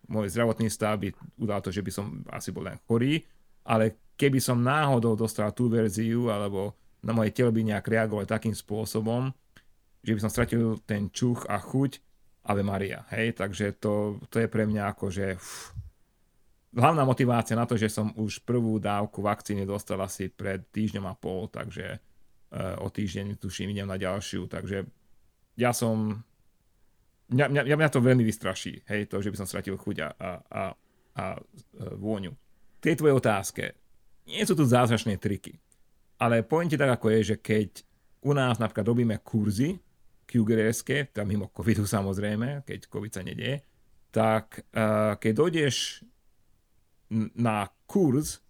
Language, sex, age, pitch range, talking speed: Slovak, male, 30-49, 100-120 Hz, 155 wpm